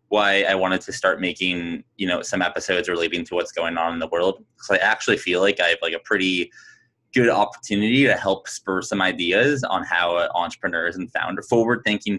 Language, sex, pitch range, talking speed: English, male, 90-120 Hz, 205 wpm